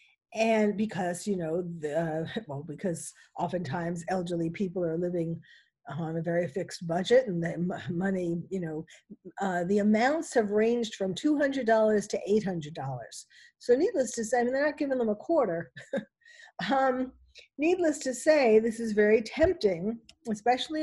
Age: 50-69